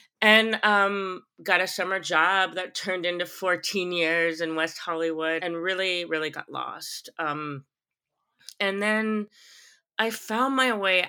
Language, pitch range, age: English, 150-185 Hz, 30-49